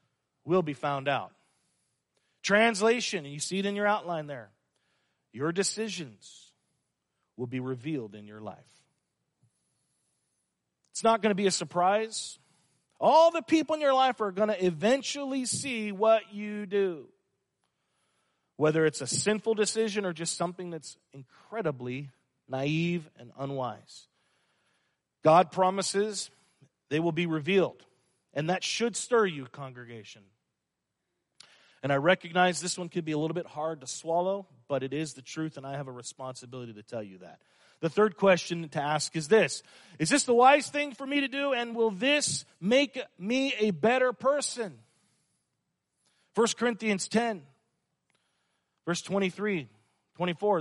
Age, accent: 40-59, American